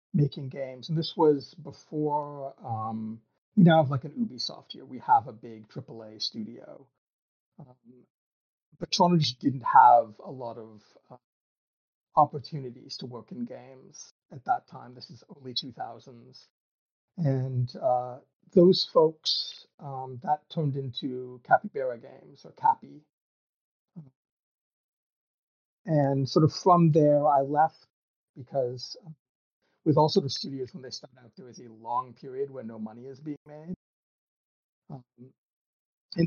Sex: male